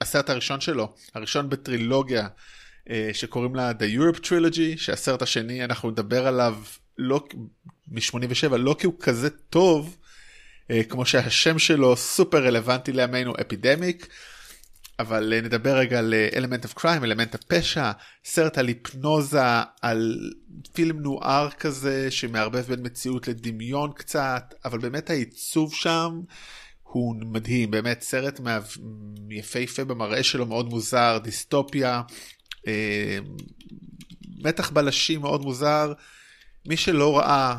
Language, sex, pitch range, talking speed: Hebrew, male, 115-145 Hz, 115 wpm